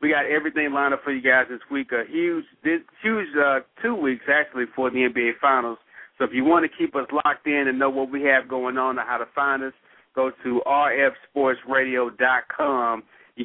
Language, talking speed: English, 210 wpm